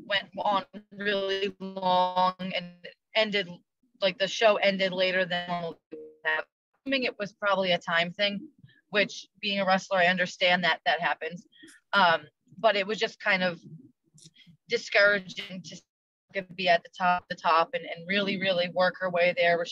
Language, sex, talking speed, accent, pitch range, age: English, female, 165 wpm, American, 175-205 Hz, 20-39